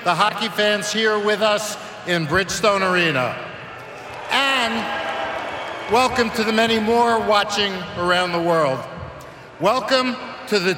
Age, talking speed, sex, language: 50-69, 120 wpm, male, English